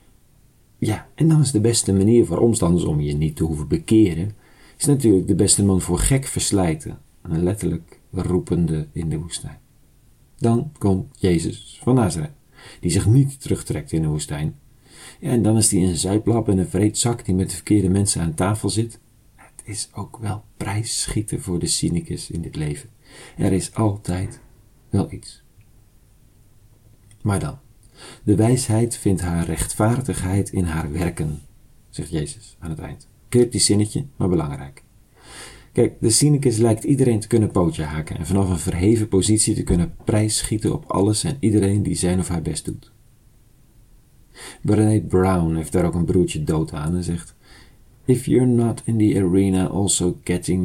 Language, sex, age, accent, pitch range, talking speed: Dutch, male, 50-69, Dutch, 90-115 Hz, 170 wpm